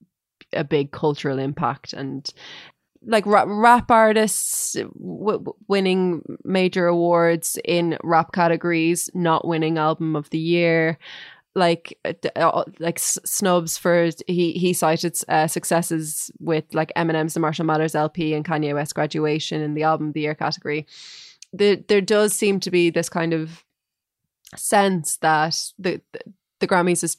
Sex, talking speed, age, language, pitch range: female, 140 wpm, 20-39, English, 150-180 Hz